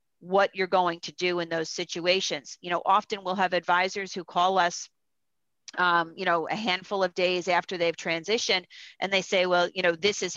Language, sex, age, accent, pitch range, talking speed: English, female, 40-59, American, 165-190 Hz, 205 wpm